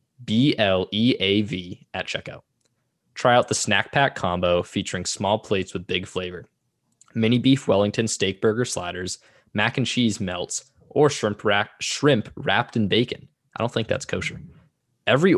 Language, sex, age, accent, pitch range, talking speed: English, male, 20-39, American, 95-120 Hz, 150 wpm